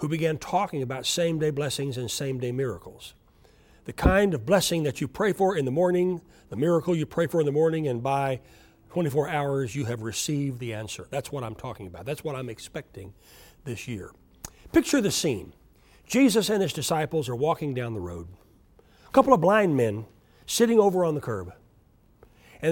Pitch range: 130-215 Hz